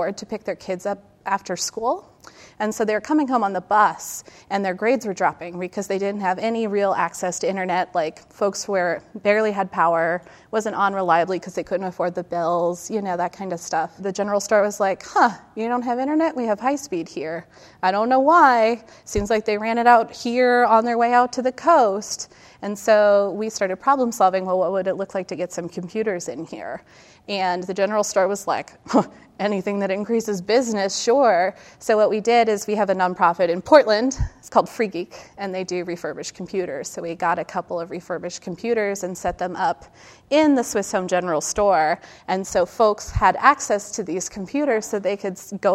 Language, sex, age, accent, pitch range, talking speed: English, female, 30-49, American, 185-230 Hz, 215 wpm